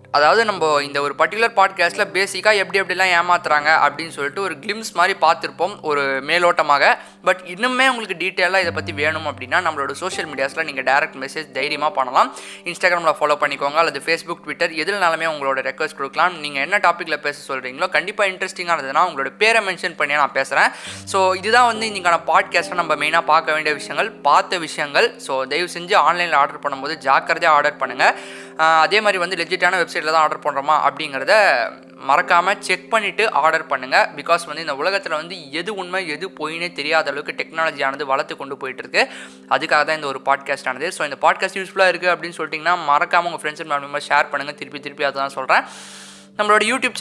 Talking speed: 170 wpm